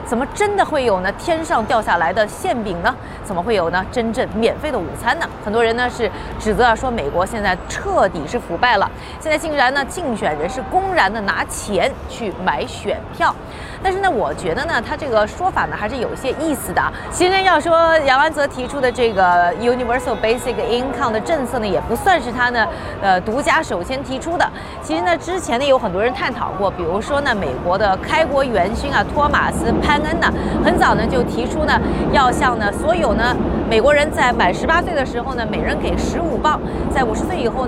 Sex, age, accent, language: female, 30-49, native, Chinese